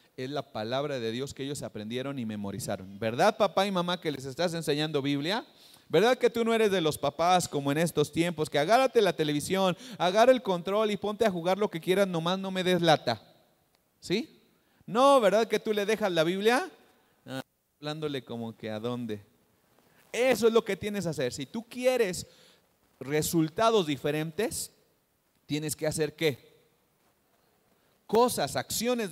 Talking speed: 170 wpm